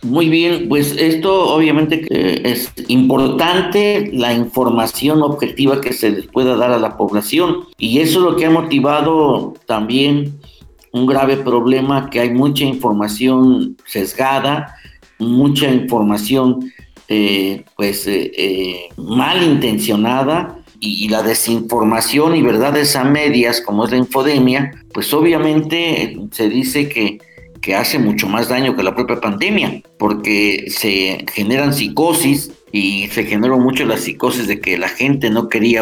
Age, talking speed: 50-69, 140 wpm